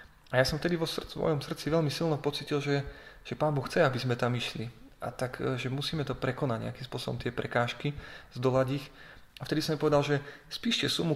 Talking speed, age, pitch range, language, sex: 210 wpm, 30-49, 125-140 Hz, Slovak, male